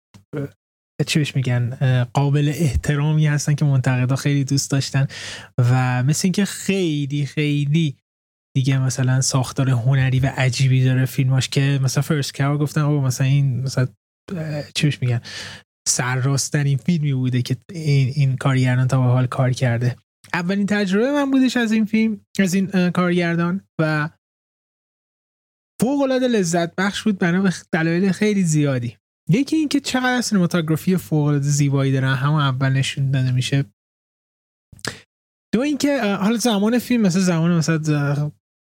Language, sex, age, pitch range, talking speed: Persian, male, 20-39, 135-175 Hz, 135 wpm